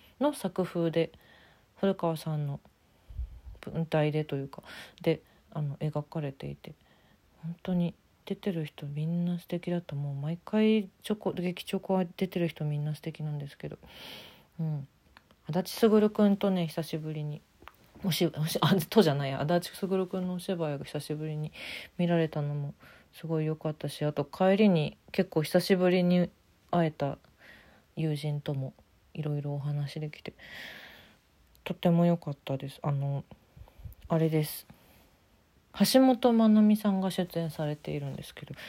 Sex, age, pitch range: female, 40-59, 145-175 Hz